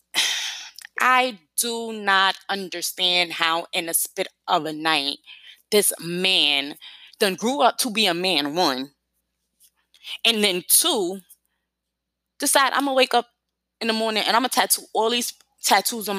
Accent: American